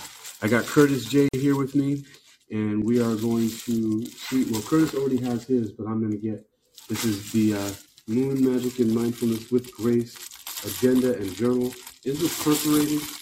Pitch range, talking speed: 110-155 Hz, 170 wpm